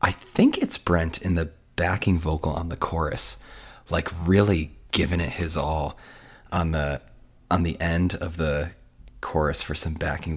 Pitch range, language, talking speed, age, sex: 75-90 Hz, English, 160 wpm, 30-49, male